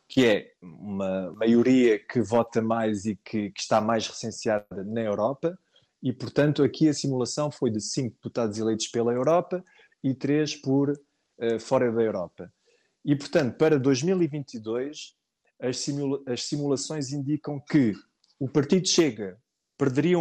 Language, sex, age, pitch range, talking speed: Portuguese, male, 20-39, 120-155 Hz, 145 wpm